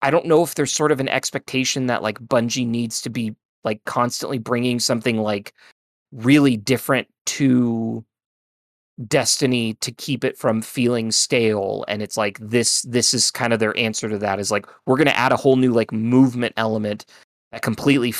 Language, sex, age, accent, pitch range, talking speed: English, male, 20-39, American, 105-130 Hz, 185 wpm